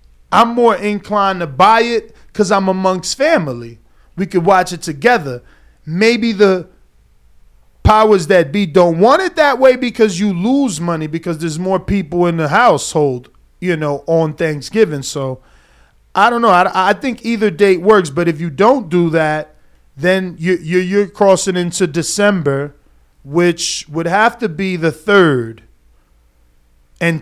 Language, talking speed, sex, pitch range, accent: English, 155 wpm, male, 150-205 Hz, American